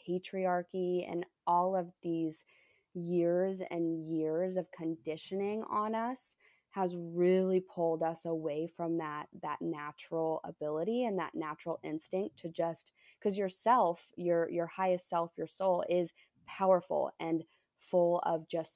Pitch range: 165-190 Hz